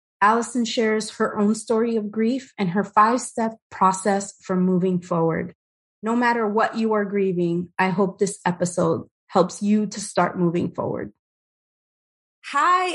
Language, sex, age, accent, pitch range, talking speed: English, female, 20-39, American, 175-215 Hz, 150 wpm